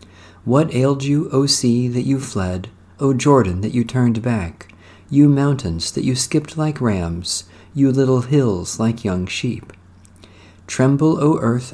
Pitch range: 95-130 Hz